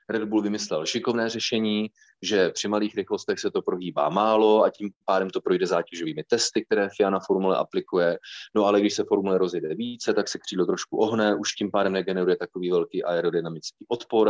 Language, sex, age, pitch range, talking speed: Czech, male, 30-49, 100-125 Hz, 190 wpm